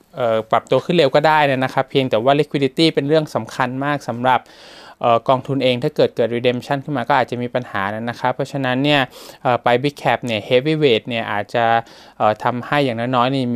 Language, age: Thai, 20-39